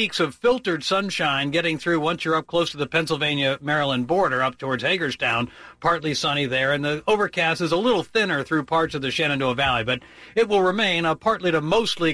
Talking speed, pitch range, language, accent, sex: 200 wpm, 145-190 Hz, English, American, male